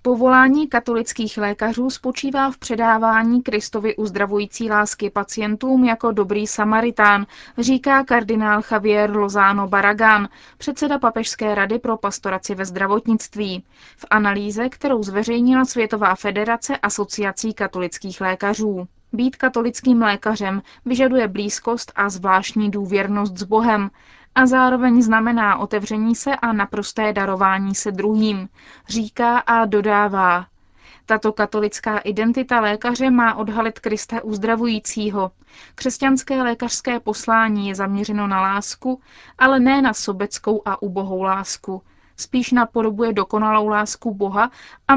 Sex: female